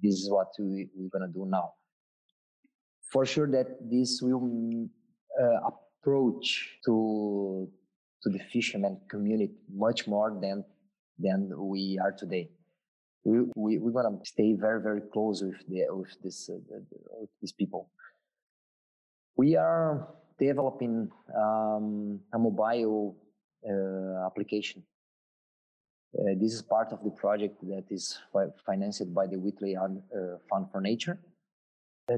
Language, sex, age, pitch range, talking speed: English, male, 20-39, 100-135 Hz, 135 wpm